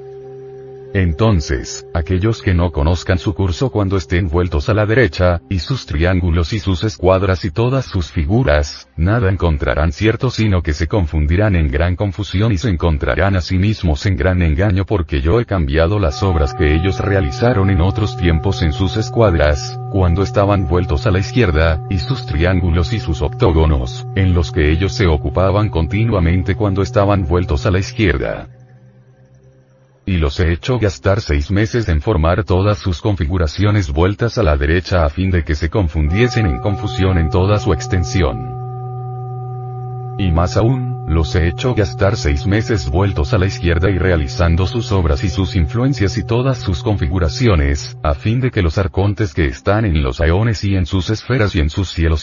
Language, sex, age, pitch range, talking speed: Spanish, male, 40-59, 85-110 Hz, 175 wpm